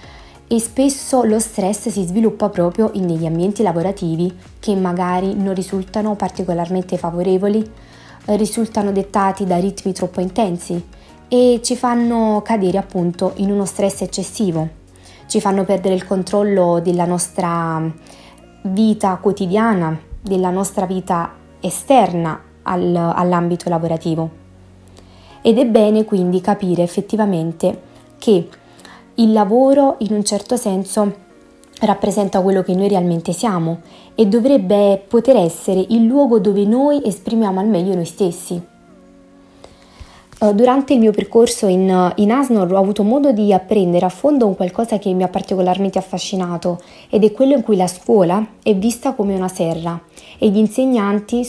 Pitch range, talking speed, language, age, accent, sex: 180-215 Hz, 135 wpm, Italian, 20-39, native, female